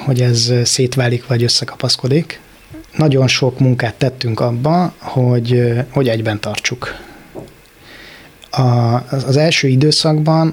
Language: Hungarian